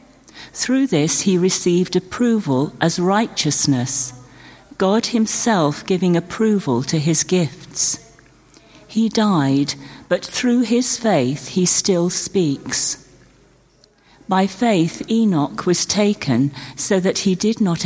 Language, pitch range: English, 140-190 Hz